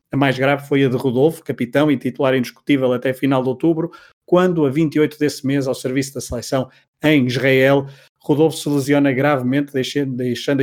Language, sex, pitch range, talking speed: Portuguese, male, 130-155 Hz, 180 wpm